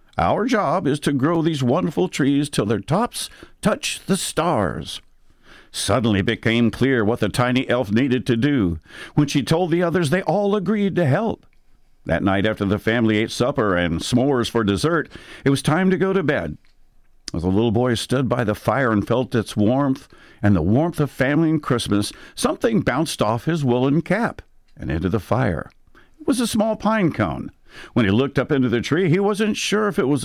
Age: 60-79